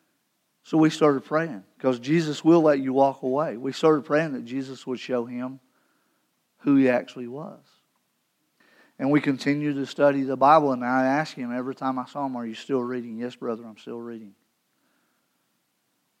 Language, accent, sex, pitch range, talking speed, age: English, American, male, 125-155 Hz, 180 wpm, 50-69